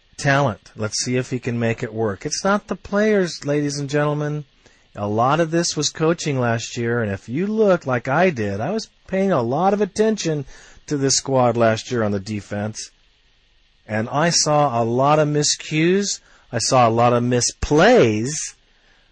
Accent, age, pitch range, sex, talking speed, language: American, 40-59, 115-180 Hz, male, 185 wpm, English